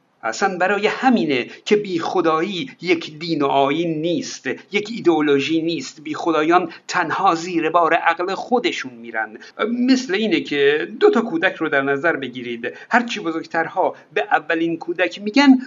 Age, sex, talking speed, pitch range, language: 50-69, male, 150 wpm, 165-255 Hz, Persian